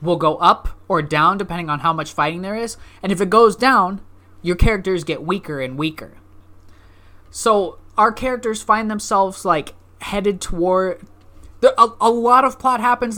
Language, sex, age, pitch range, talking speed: English, male, 20-39, 130-180 Hz, 165 wpm